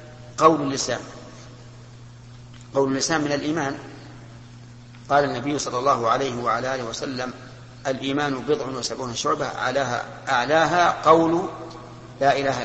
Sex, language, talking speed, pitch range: male, Arabic, 110 wpm, 120-145 Hz